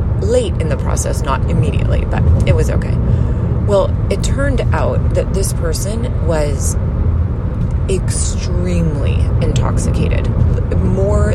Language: English